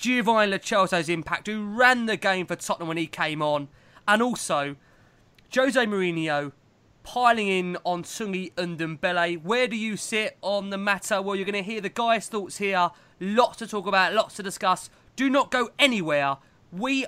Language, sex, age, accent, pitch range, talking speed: English, male, 20-39, British, 180-230 Hz, 175 wpm